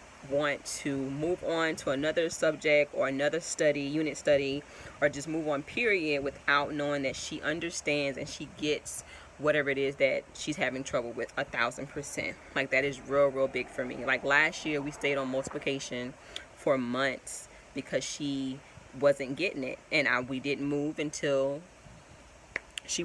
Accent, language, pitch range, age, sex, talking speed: American, English, 135-150 Hz, 10-29, female, 165 wpm